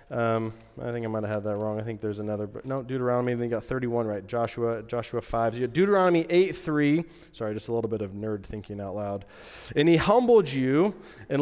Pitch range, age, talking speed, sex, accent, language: 115-155 Hz, 30-49, 215 wpm, male, American, English